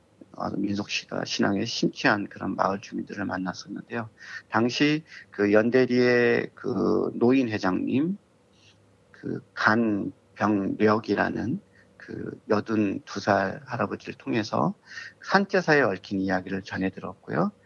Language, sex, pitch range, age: Korean, male, 100-120 Hz, 40-59